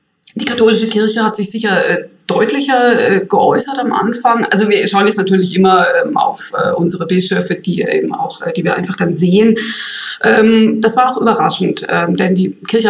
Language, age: German, 20-39